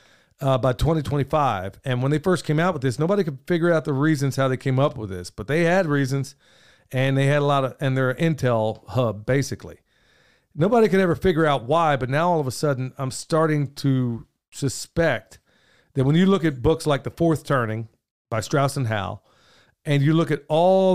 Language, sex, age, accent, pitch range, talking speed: English, male, 40-59, American, 125-160 Hz, 210 wpm